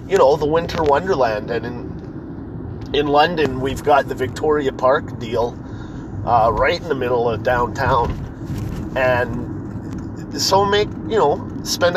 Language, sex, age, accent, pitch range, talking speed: English, male, 30-49, American, 130-160 Hz, 140 wpm